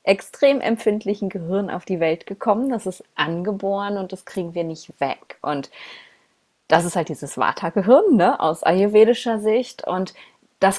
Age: 20-39